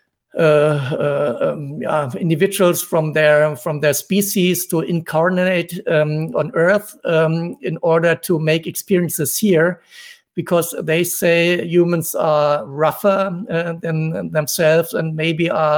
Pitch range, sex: 155-185 Hz, male